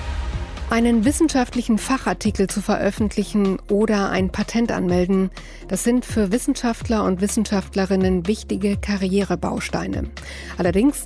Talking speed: 100 wpm